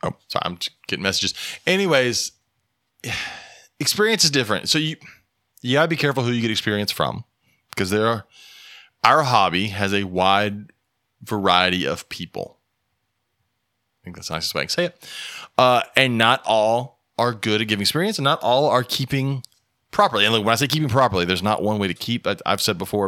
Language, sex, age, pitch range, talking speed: English, male, 20-39, 100-125 Hz, 195 wpm